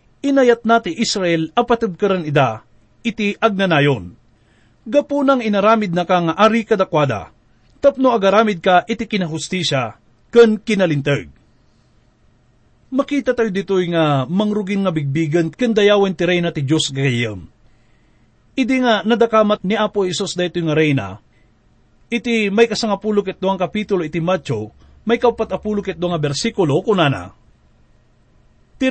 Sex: male